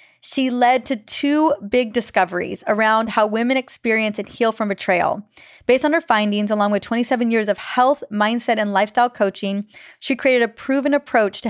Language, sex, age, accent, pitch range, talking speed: English, female, 30-49, American, 210-255 Hz, 175 wpm